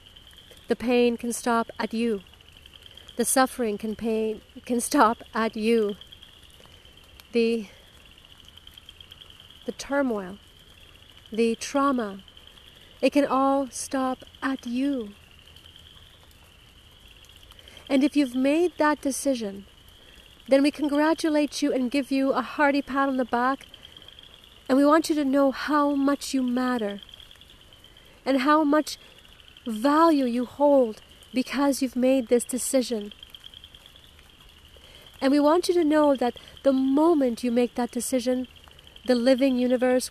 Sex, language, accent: female, English, American